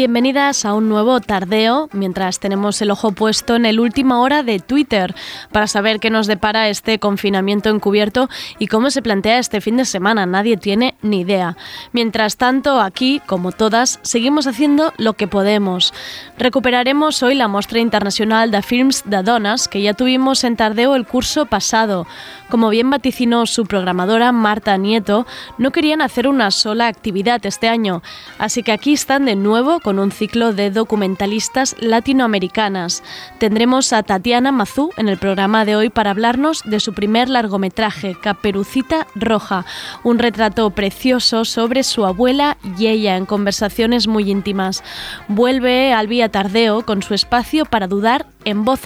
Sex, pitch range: female, 205-250 Hz